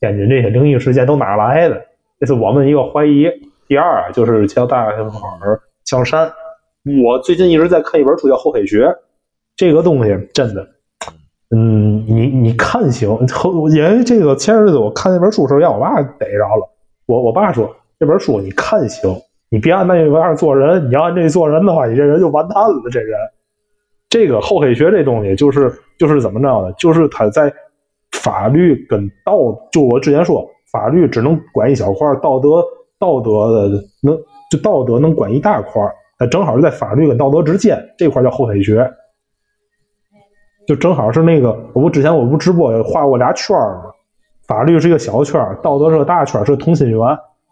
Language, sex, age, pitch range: Chinese, male, 20-39, 120-170 Hz